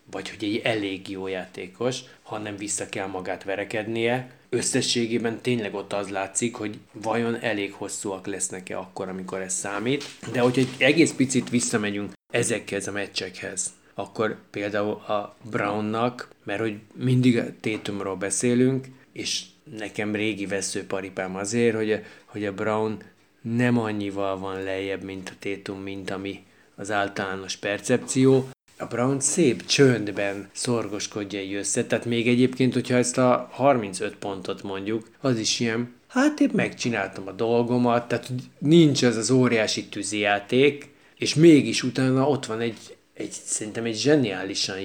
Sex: male